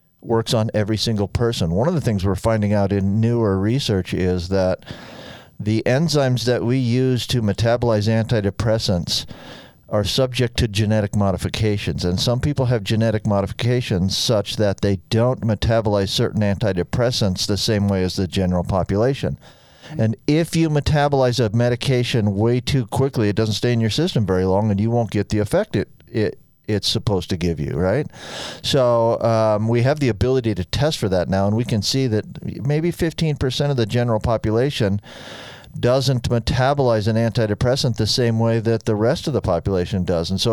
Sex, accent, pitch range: male, American, 105-125 Hz